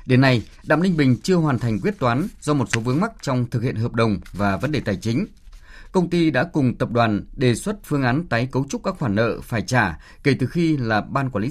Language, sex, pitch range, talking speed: Vietnamese, male, 110-150 Hz, 260 wpm